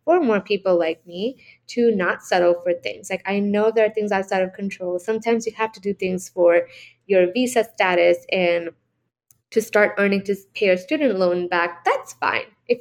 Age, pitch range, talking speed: 20-39, 180-245 Hz, 195 wpm